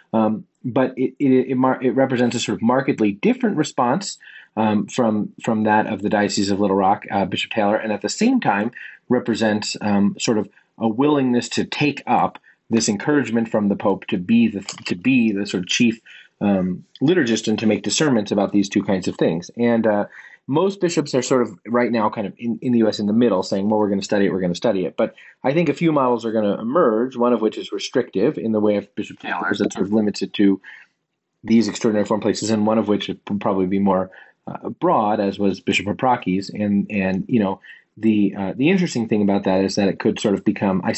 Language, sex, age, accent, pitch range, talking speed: English, male, 30-49, American, 100-120 Hz, 240 wpm